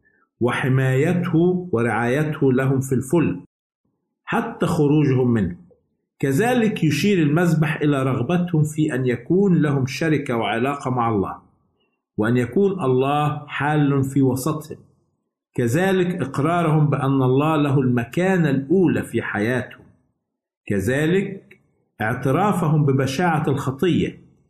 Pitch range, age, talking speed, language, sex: 120-155 Hz, 50-69, 100 wpm, Arabic, male